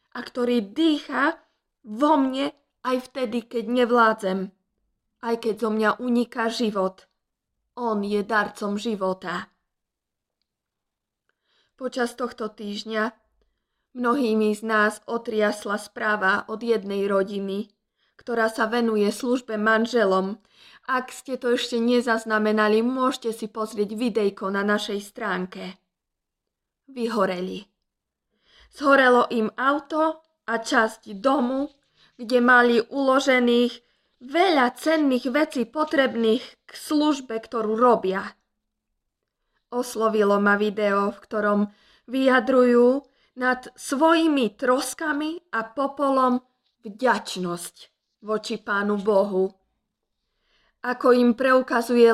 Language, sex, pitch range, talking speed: Slovak, female, 210-255 Hz, 95 wpm